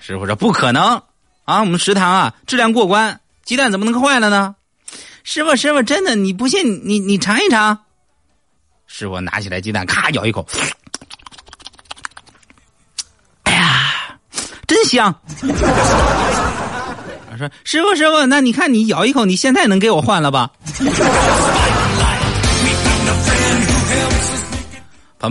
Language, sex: Chinese, male